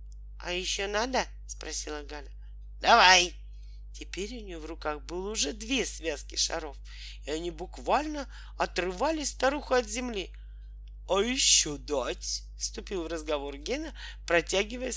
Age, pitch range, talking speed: 40-59, 150-255 Hz, 125 wpm